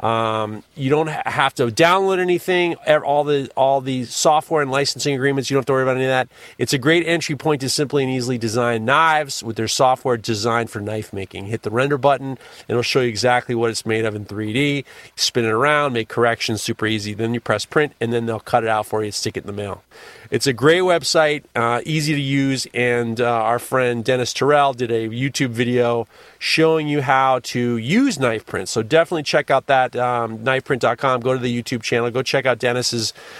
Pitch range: 120-150 Hz